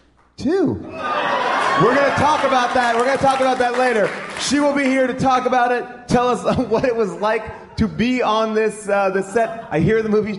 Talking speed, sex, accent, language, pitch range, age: 215 wpm, male, American, English, 160-250 Hz, 30-49